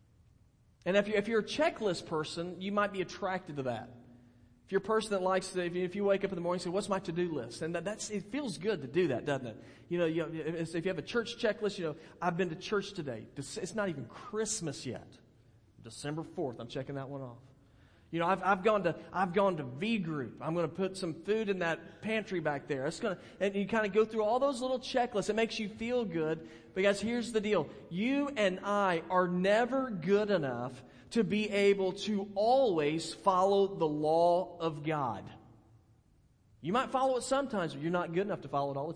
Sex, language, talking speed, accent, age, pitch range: male, English, 230 wpm, American, 40-59, 140-205 Hz